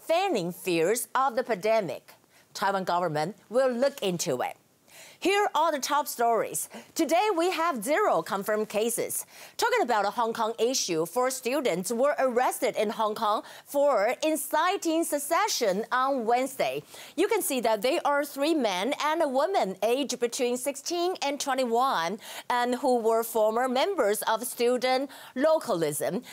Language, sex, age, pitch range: Chinese, female, 40-59, 220-285 Hz